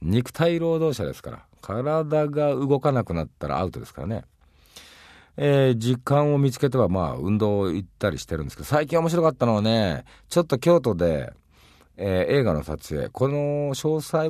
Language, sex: Japanese, male